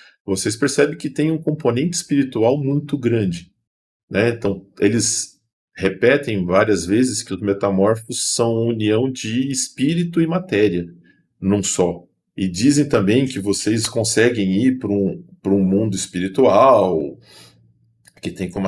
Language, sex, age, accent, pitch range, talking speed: Portuguese, male, 40-59, Brazilian, 95-135 Hz, 135 wpm